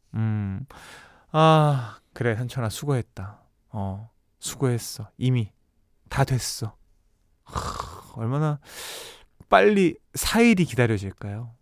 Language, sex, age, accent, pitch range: Korean, male, 20-39, native, 110-160 Hz